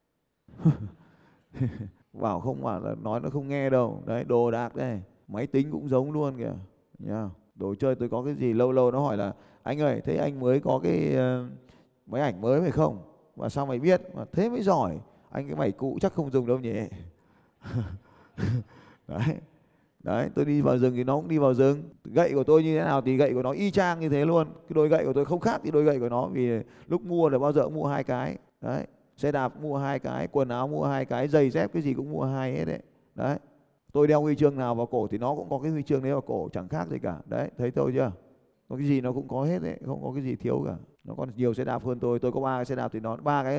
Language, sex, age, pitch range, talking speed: Vietnamese, male, 20-39, 120-145 Hz, 255 wpm